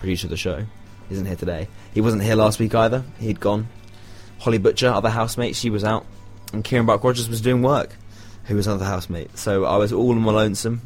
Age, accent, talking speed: 20-39, British, 225 wpm